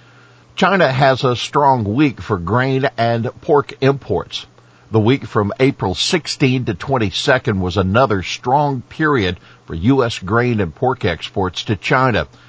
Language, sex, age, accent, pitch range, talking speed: English, male, 50-69, American, 95-125 Hz, 140 wpm